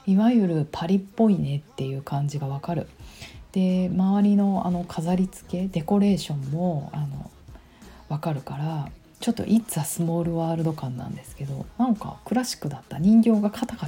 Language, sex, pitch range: Japanese, female, 140-190 Hz